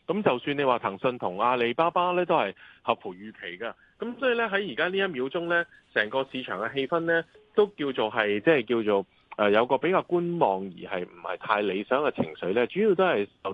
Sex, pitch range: male, 115-175 Hz